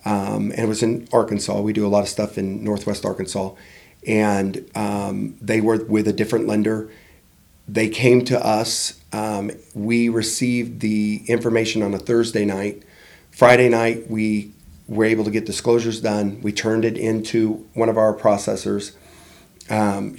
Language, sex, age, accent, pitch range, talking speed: English, male, 40-59, American, 105-120 Hz, 160 wpm